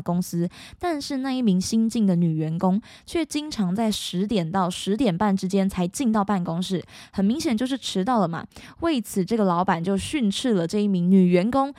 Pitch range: 185-245 Hz